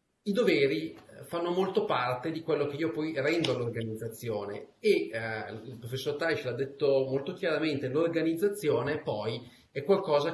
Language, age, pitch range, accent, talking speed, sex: Italian, 30-49, 130-170 Hz, native, 145 wpm, male